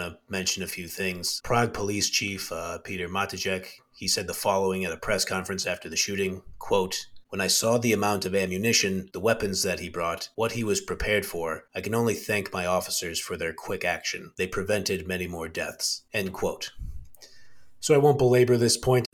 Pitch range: 90-105 Hz